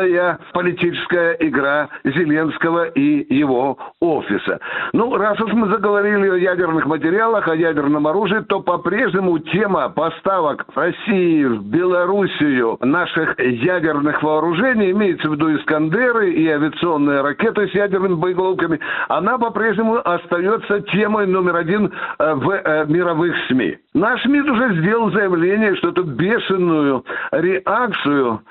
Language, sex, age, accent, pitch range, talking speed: Russian, male, 60-79, native, 170-225 Hz, 120 wpm